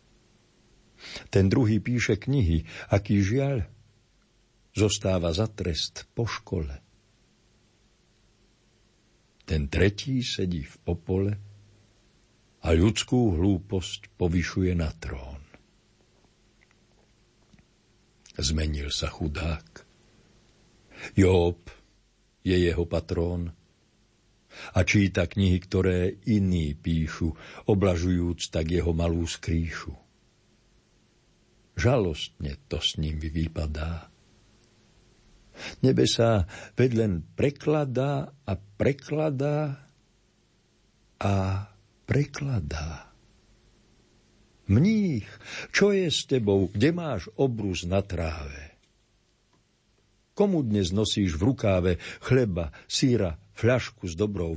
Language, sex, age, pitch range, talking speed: Slovak, male, 60-79, 85-115 Hz, 80 wpm